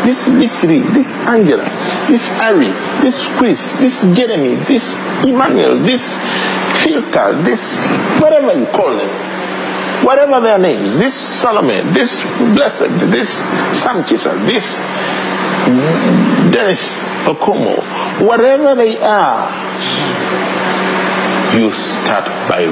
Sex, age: male, 50-69